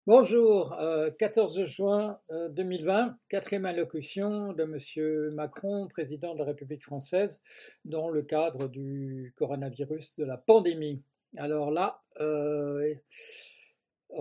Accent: French